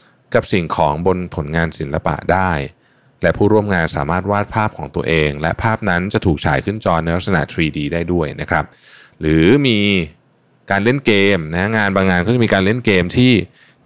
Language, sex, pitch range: Thai, male, 80-105 Hz